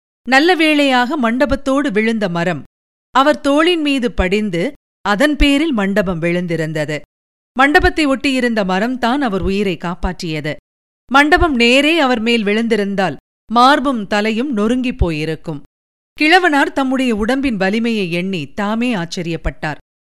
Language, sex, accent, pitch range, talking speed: Tamil, female, native, 190-285 Hz, 105 wpm